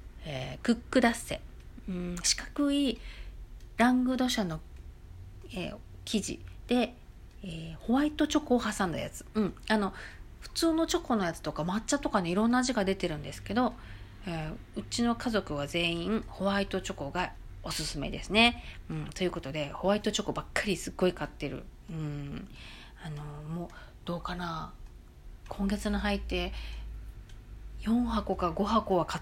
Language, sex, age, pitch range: Japanese, female, 40-59, 165-260 Hz